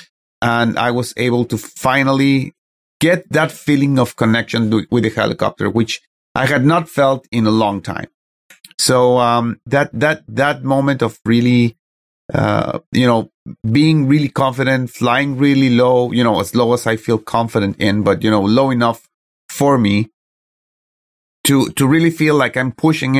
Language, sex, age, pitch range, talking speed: English, male, 30-49, 110-135 Hz, 165 wpm